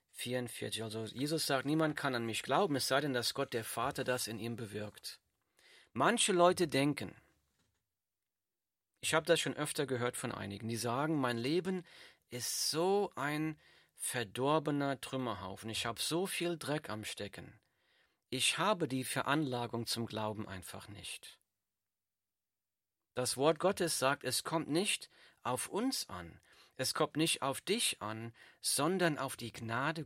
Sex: male